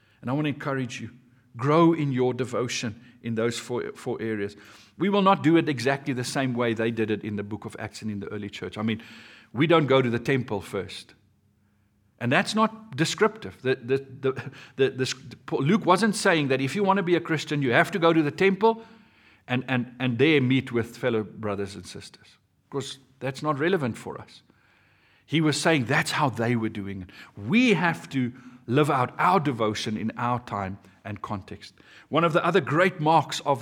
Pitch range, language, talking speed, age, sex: 125-170 Hz, English, 210 wpm, 50-69, male